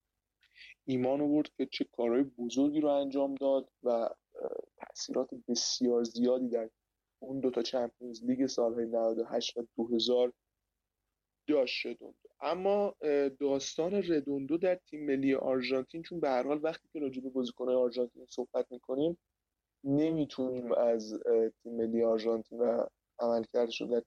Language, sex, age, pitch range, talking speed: Persian, male, 20-39, 120-140 Hz, 120 wpm